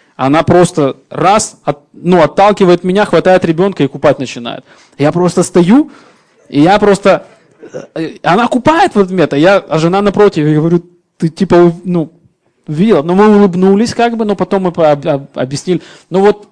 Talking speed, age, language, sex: 160 wpm, 20-39, Russian, male